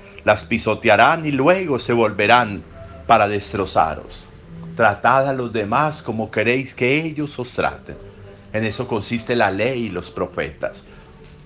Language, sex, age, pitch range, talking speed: Spanish, male, 50-69, 100-130 Hz, 135 wpm